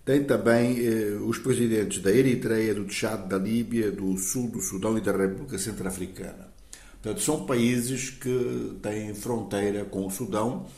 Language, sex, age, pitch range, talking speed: Portuguese, male, 60-79, 105-130 Hz, 155 wpm